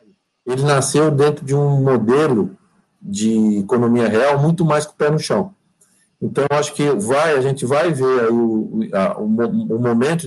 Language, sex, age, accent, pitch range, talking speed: Portuguese, male, 50-69, Brazilian, 130-185 Hz, 170 wpm